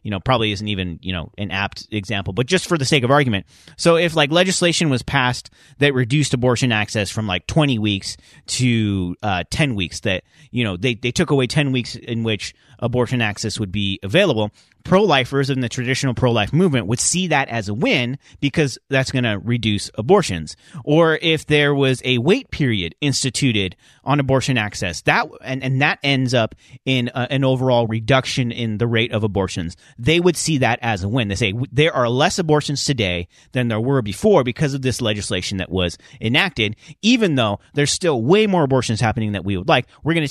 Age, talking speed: 30-49, 200 wpm